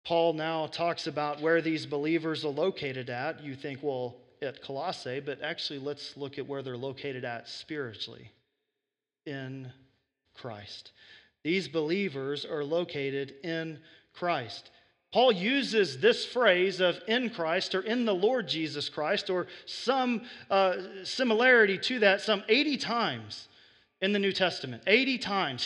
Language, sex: English, male